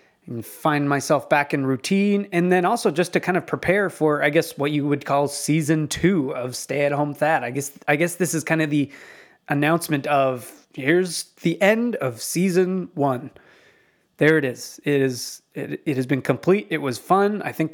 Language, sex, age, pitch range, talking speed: English, male, 20-39, 140-170 Hz, 205 wpm